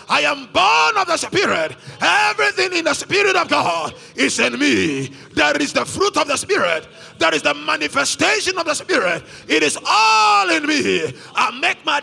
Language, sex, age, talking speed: English, male, 30-49, 185 wpm